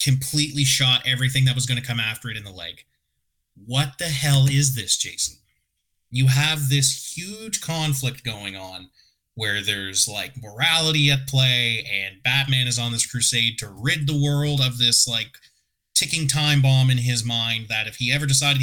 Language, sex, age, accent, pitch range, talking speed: English, male, 30-49, American, 125-150 Hz, 180 wpm